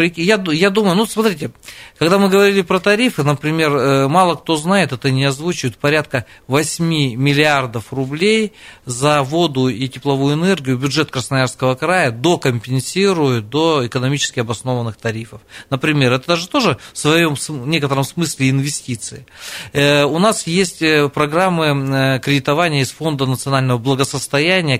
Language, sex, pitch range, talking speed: Russian, male, 130-160 Hz, 125 wpm